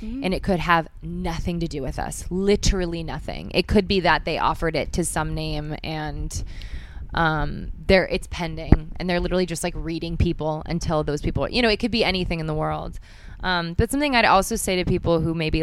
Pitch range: 150-170 Hz